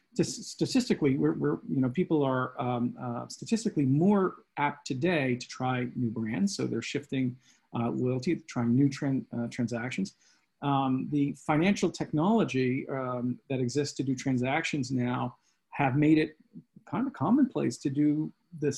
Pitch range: 125-155 Hz